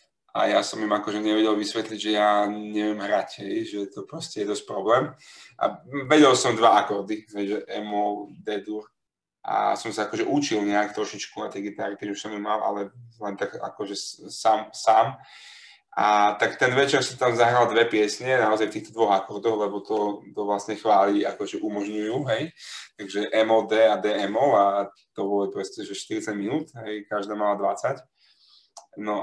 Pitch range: 105-115 Hz